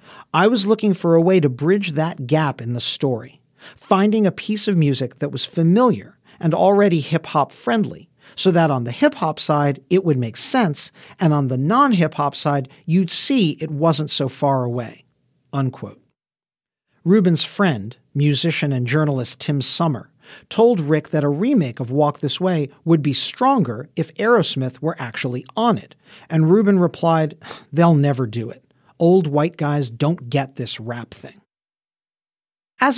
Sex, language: male, English